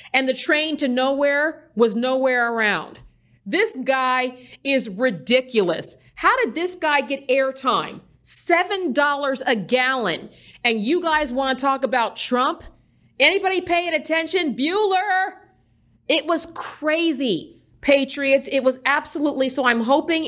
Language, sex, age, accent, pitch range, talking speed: English, female, 40-59, American, 235-290 Hz, 125 wpm